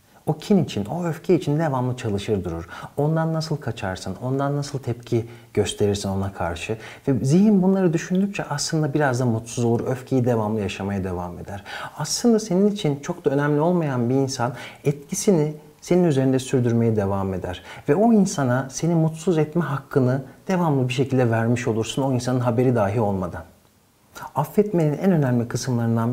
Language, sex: Turkish, male